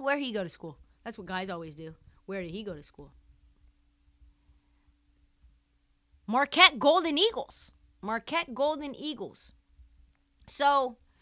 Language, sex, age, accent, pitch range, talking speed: English, female, 30-49, American, 175-260 Hz, 125 wpm